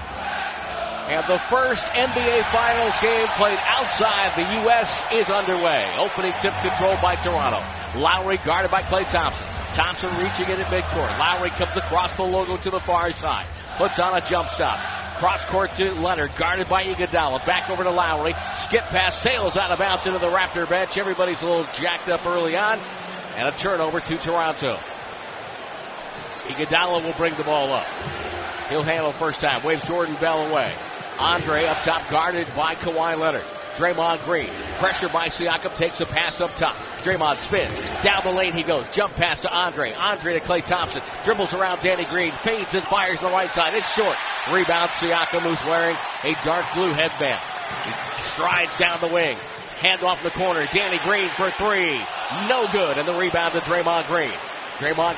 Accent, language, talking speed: American, English, 175 wpm